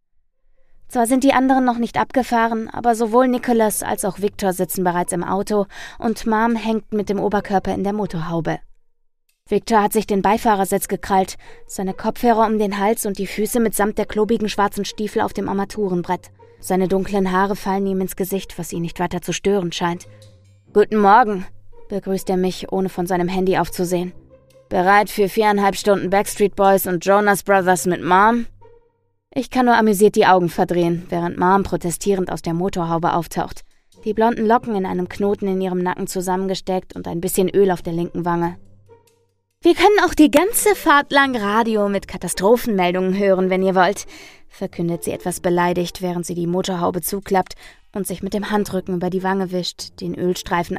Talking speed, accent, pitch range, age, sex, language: 175 wpm, German, 180-215 Hz, 20-39, female, German